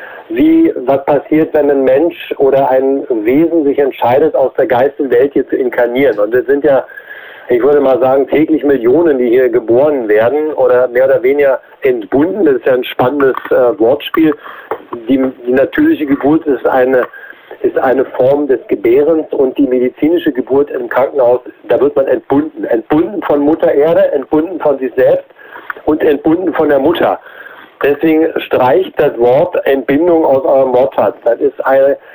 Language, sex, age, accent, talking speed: German, male, 50-69, German, 165 wpm